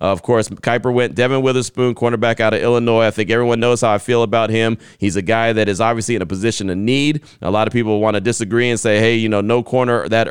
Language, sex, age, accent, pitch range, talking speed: English, male, 30-49, American, 105-125 Hz, 260 wpm